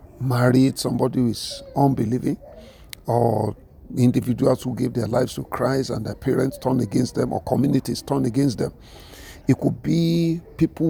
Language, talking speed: English, 155 wpm